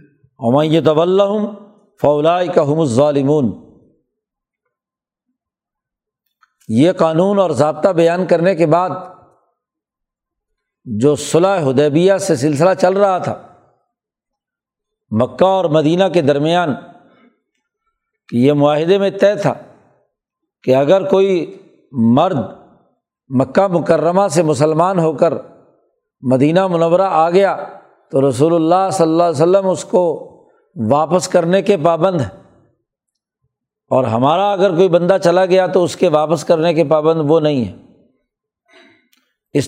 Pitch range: 150-195 Hz